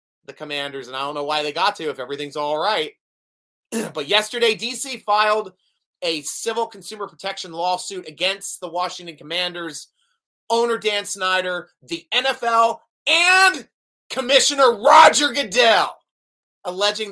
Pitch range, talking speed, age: 170-230 Hz, 130 wpm, 30-49